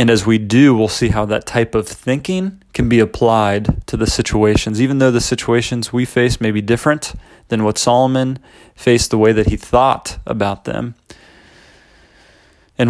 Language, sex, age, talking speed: English, male, 30-49, 175 wpm